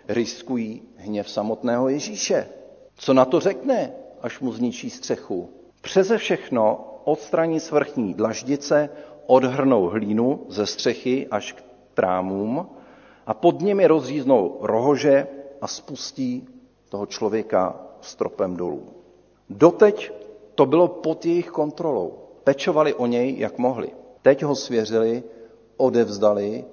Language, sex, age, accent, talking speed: Czech, male, 50-69, native, 110 wpm